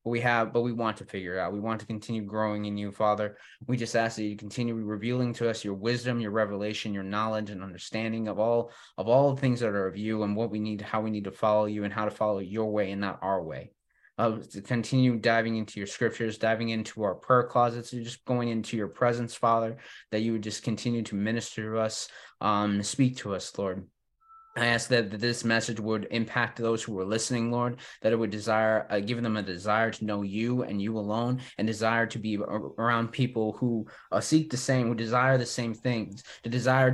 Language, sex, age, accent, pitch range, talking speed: English, male, 20-39, American, 105-125 Hz, 230 wpm